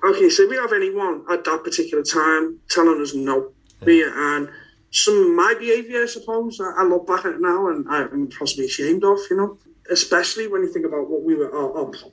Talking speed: 225 wpm